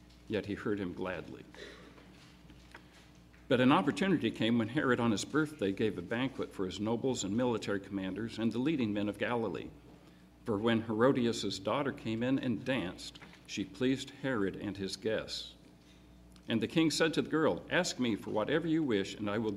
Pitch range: 95-130 Hz